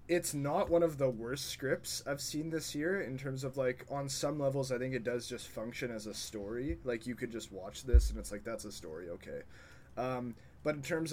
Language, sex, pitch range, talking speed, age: English, male, 110-140 Hz, 235 wpm, 20-39